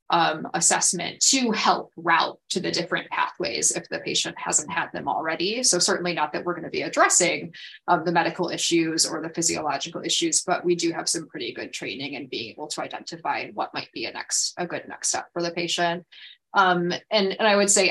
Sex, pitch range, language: female, 170-195 Hz, English